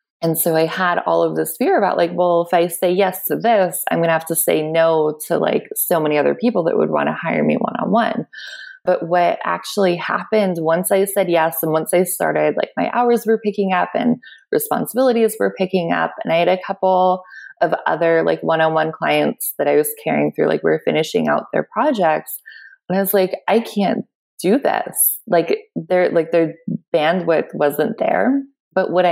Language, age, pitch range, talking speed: English, 20-39, 165-245 Hz, 200 wpm